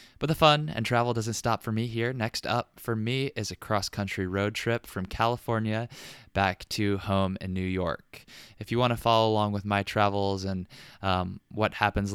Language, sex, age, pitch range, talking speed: English, male, 20-39, 95-110 Hz, 200 wpm